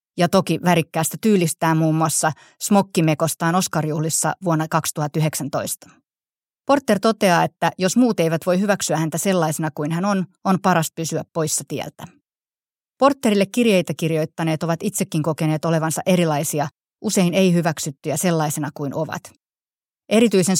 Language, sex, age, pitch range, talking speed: Finnish, female, 30-49, 160-195 Hz, 125 wpm